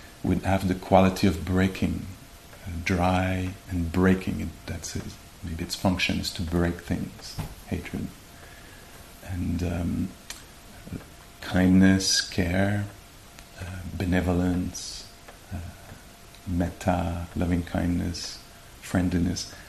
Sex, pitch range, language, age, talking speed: male, 85-95 Hz, English, 50-69, 95 wpm